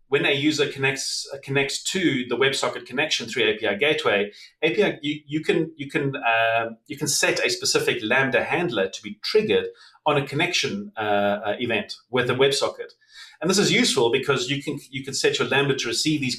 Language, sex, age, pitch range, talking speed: English, male, 30-49, 115-160 Hz, 170 wpm